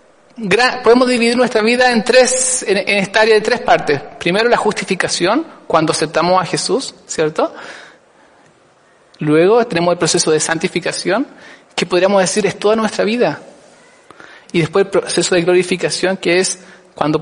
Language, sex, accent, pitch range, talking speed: Spanish, male, Argentinian, 170-210 Hz, 145 wpm